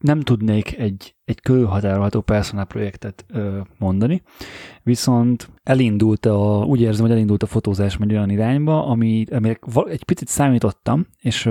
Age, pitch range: 30-49, 100-120 Hz